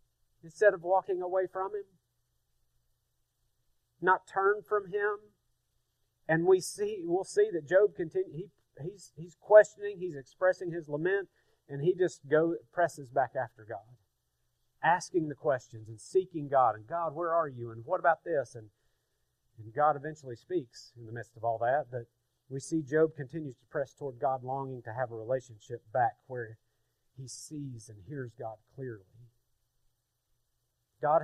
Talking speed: 160 wpm